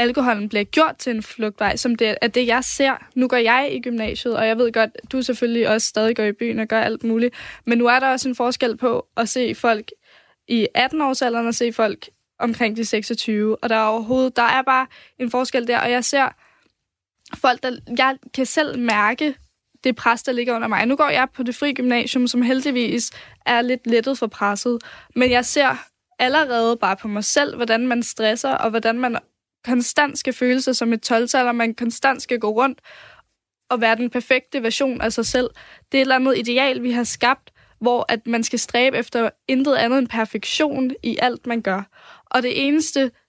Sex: female